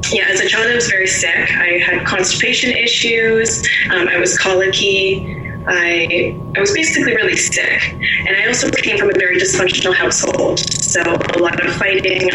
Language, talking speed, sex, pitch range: English, 175 wpm, female, 175-190 Hz